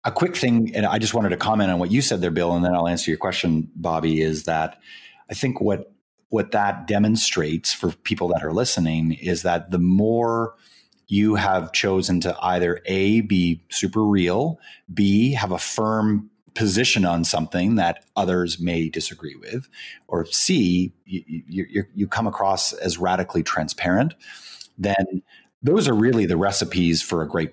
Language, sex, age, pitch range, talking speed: English, male, 30-49, 90-110 Hz, 170 wpm